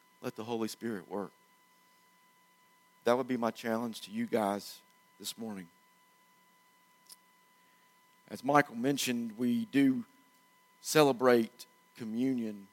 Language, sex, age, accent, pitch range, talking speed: English, male, 40-59, American, 115-180 Hz, 105 wpm